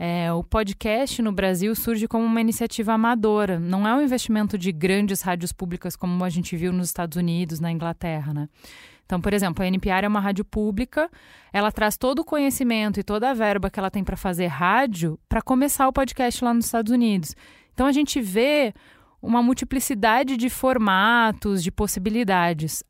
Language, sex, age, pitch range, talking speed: Portuguese, female, 20-39, 195-255 Hz, 180 wpm